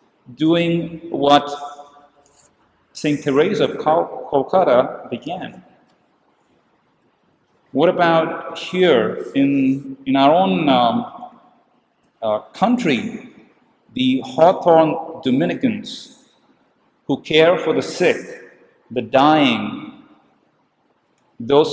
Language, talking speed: English, 75 wpm